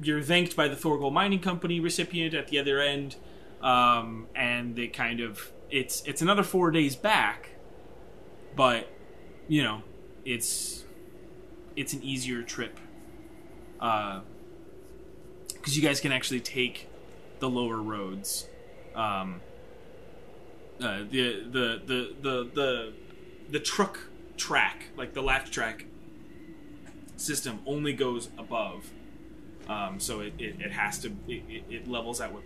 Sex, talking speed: male, 135 wpm